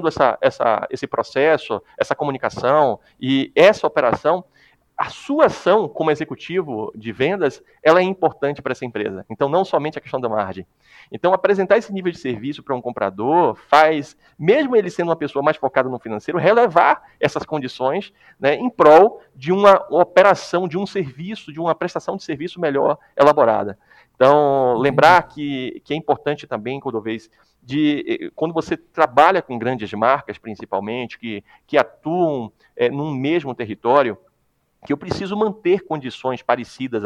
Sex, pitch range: male, 130-175 Hz